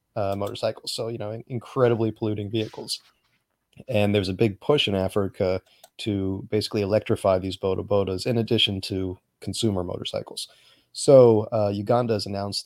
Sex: male